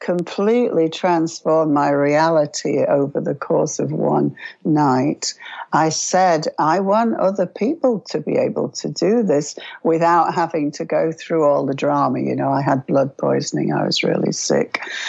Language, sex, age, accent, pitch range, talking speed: English, female, 60-79, British, 150-185 Hz, 160 wpm